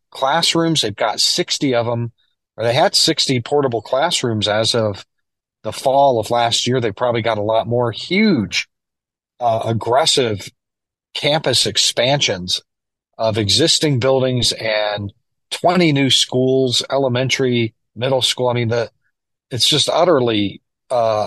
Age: 40-59